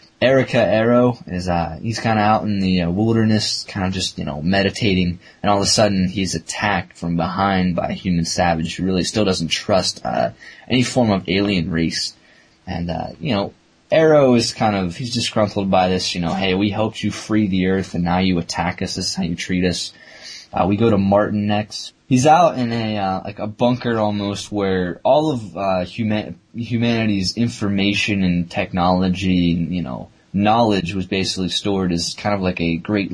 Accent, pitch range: American, 90-110 Hz